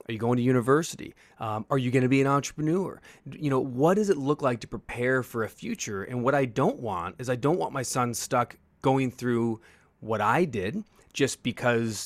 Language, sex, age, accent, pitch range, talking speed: English, male, 30-49, American, 110-135 Hz, 220 wpm